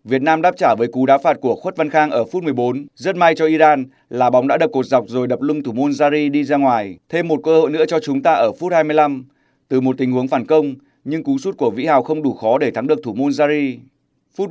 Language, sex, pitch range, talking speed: Vietnamese, male, 130-155 Hz, 275 wpm